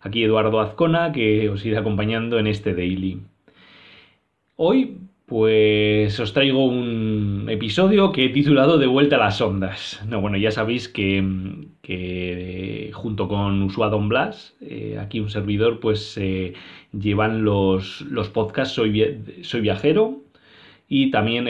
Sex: male